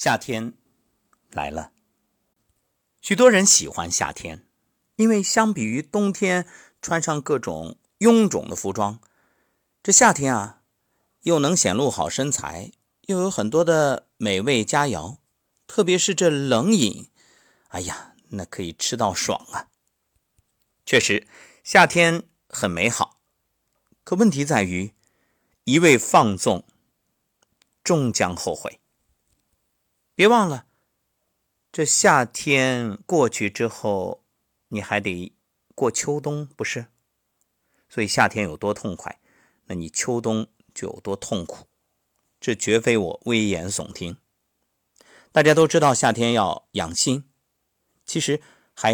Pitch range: 105-165 Hz